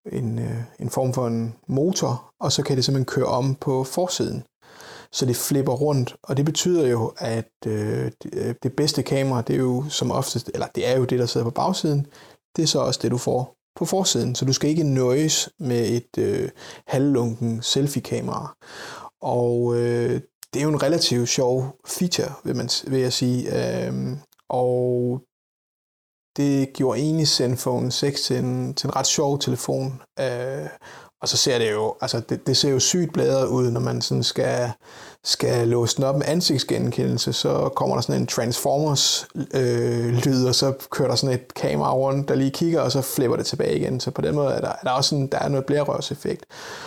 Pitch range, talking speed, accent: 120-145 Hz, 190 wpm, native